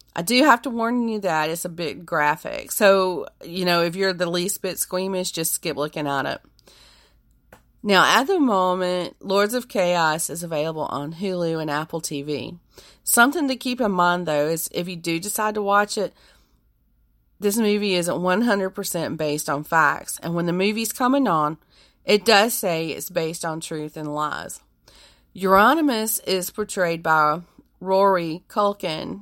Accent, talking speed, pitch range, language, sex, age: American, 165 wpm, 150-200 Hz, English, female, 30-49